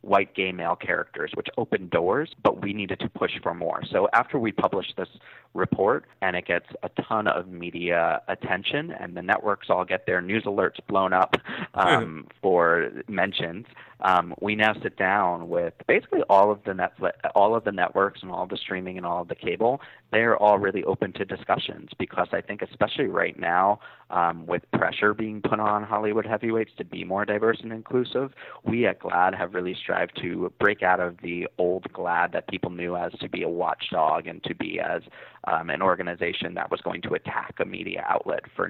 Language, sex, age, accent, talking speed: English, male, 30-49, American, 200 wpm